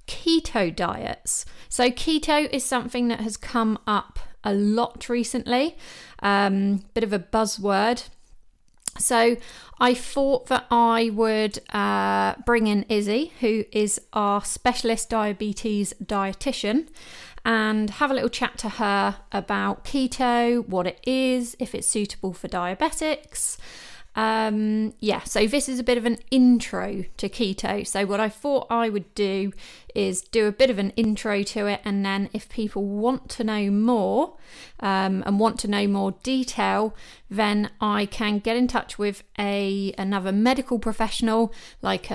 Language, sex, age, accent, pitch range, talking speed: English, female, 30-49, British, 200-240 Hz, 150 wpm